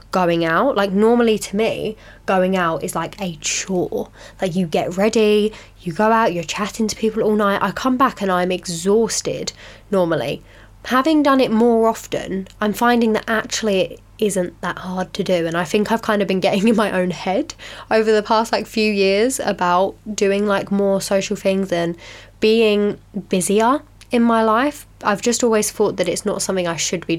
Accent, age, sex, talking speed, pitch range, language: British, 10-29, female, 195 wpm, 175-220 Hz, English